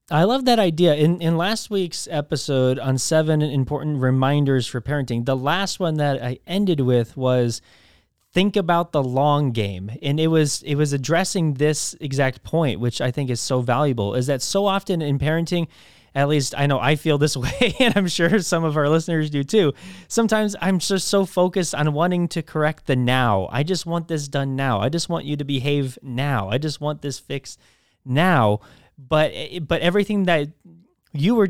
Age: 20-39